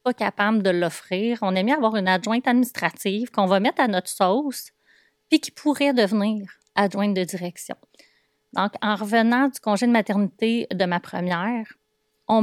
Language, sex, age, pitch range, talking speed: French, female, 30-49, 185-220 Hz, 165 wpm